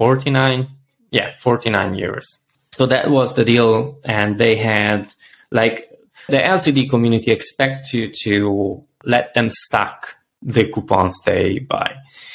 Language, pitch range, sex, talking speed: English, 105-130 Hz, male, 125 wpm